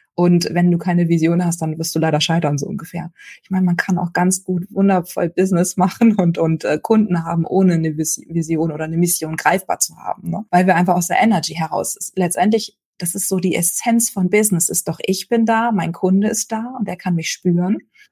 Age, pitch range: 20-39, 175-200 Hz